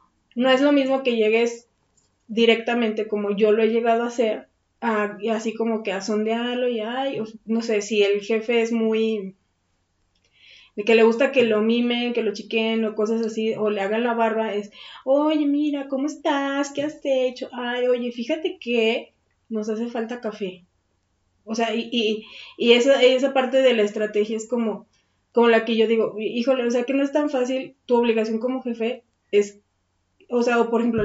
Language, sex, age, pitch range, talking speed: Spanish, female, 20-39, 205-240 Hz, 190 wpm